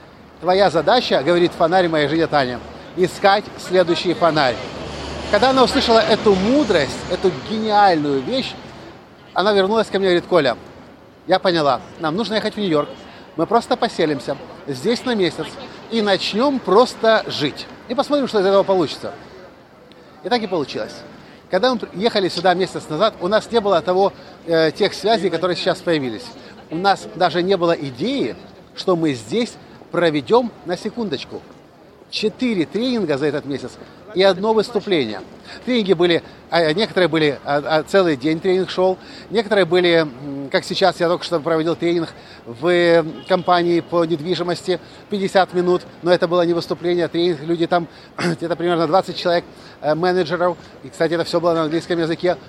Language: Russian